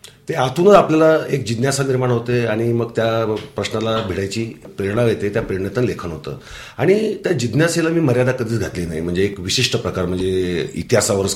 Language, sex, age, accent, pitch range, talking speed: Marathi, male, 40-59, native, 100-140 Hz, 170 wpm